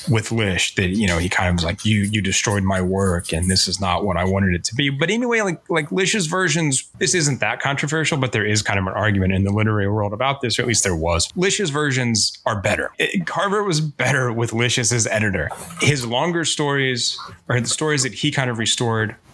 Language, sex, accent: English, male, American